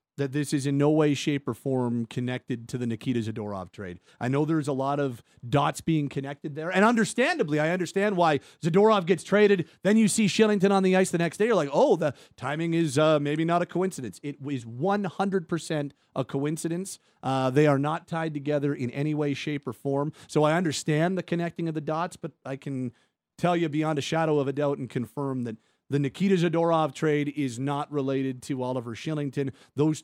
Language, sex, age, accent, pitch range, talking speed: English, male, 40-59, American, 135-165 Hz, 210 wpm